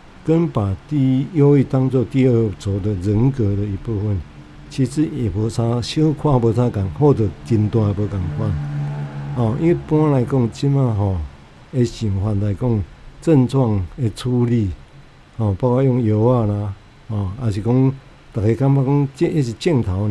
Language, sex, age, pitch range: Chinese, male, 60-79, 105-130 Hz